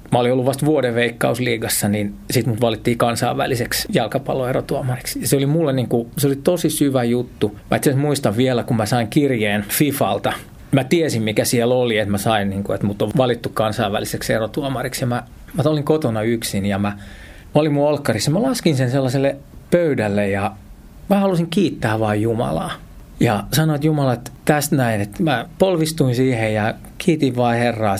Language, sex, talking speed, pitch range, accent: Finnish, male, 180 wpm, 110-140 Hz, native